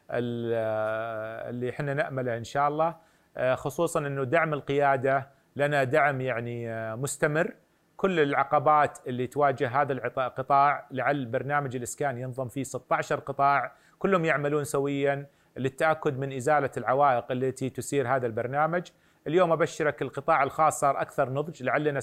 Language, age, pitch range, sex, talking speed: Arabic, 40-59, 130-160 Hz, male, 125 wpm